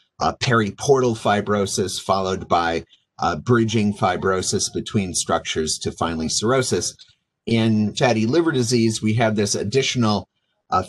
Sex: male